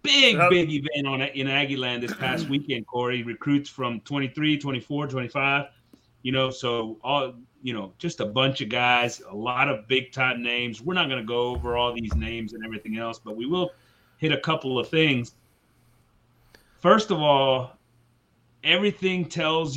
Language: English